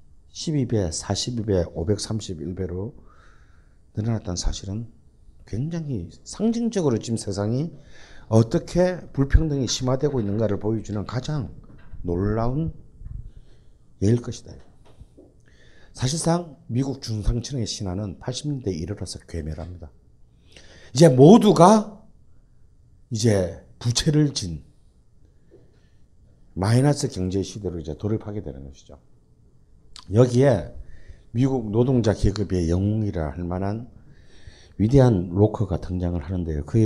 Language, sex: Korean, male